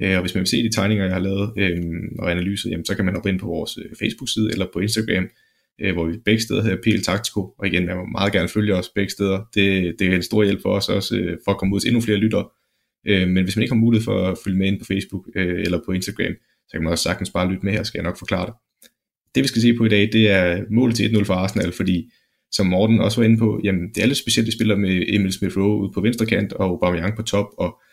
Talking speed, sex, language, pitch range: 285 wpm, male, Danish, 95-110 Hz